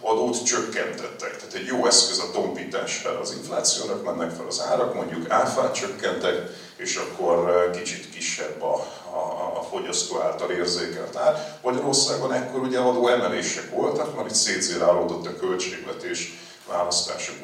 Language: Hungarian